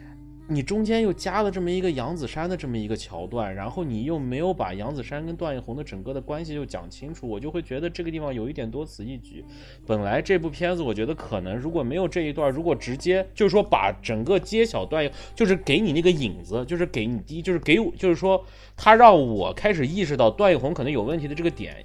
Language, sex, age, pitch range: Chinese, male, 20-39, 110-170 Hz